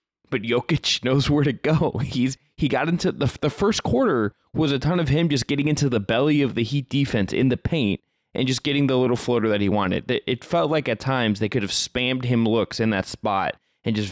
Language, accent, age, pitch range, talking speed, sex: English, American, 20-39, 105-130 Hz, 240 wpm, male